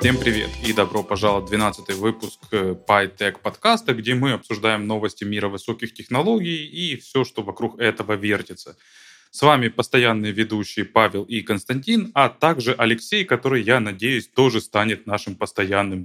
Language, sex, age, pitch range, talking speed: Ukrainian, male, 20-39, 105-145 Hz, 150 wpm